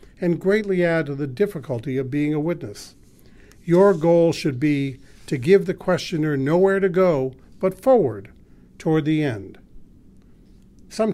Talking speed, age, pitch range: 145 wpm, 50-69, 140-185 Hz